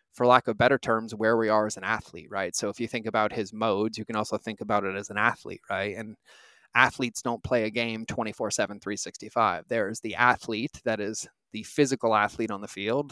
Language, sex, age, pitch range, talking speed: English, male, 20-39, 110-125 Hz, 220 wpm